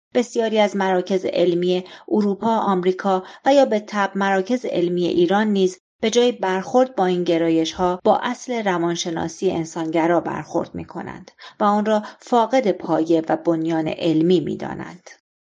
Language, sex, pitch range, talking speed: Persian, female, 165-215 Hz, 140 wpm